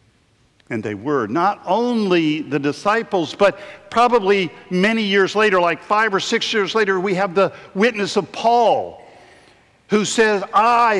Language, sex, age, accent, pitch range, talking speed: English, male, 50-69, American, 155-210 Hz, 145 wpm